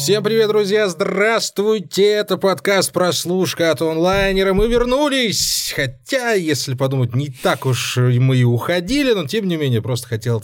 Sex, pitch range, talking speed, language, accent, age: male, 125-175 Hz, 145 wpm, Russian, native, 20-39